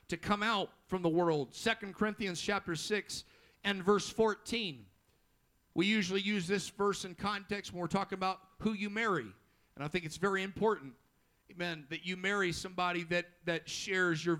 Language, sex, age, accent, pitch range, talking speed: English, male, 50-69, American, 175-210 Hz, 175 wpm